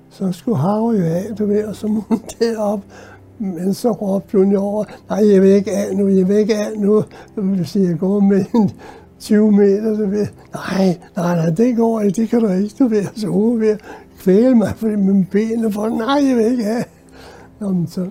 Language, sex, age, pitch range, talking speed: Danish, male, 60-79, 180-225 Hz, 230 wpm